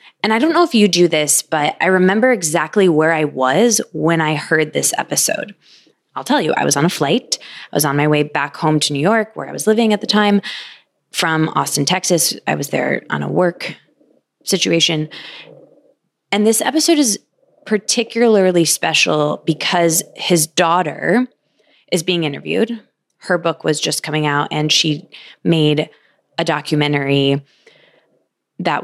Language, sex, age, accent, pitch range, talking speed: English, female, 20-39, American, 155-205 Hz, 165 wpm